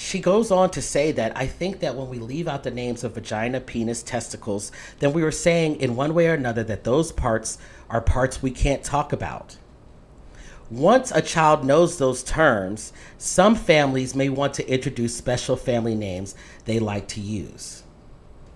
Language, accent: English, American